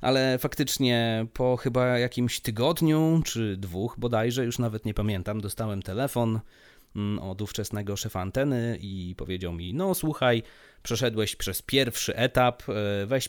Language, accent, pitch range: Polish, native, 105-135 Hz